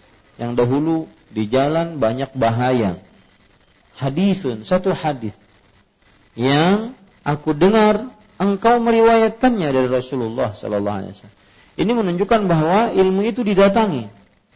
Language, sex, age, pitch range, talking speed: Malay, male, 40-59, 115-160 Hz, 95 wpm